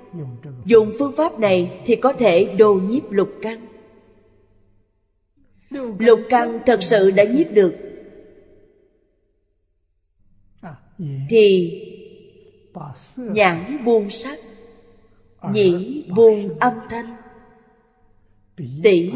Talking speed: 85 wpm